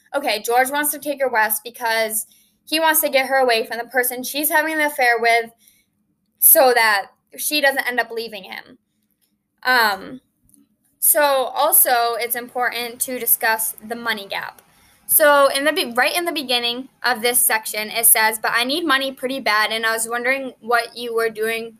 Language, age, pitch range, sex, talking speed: English, 10-29, 225-275 Hz, female, 185 wpm